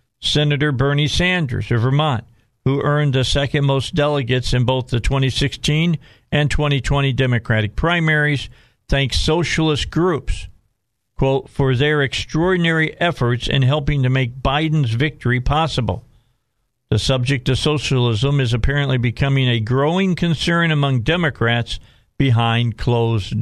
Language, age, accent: English, 50-69, American